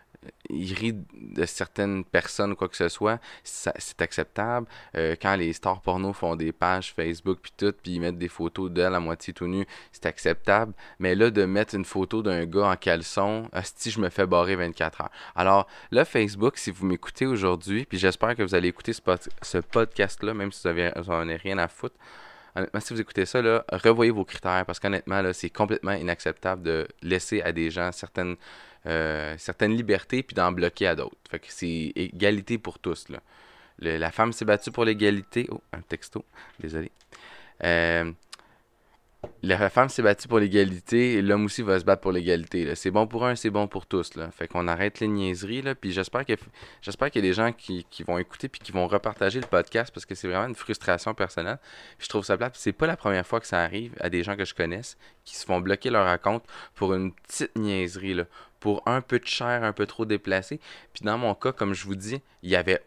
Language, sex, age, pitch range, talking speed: French, male, 20-39, 90-110 Hz, 220 wpm